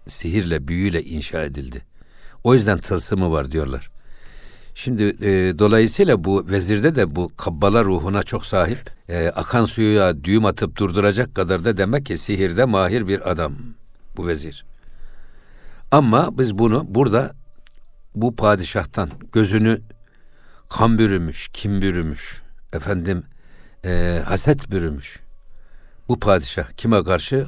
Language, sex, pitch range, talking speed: Turkish, male, 90-110 Hz, 120 wpm